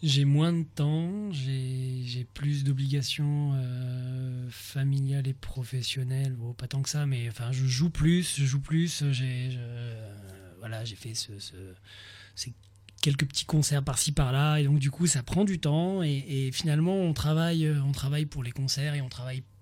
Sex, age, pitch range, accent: male, 20-39, 125-155 Hz, French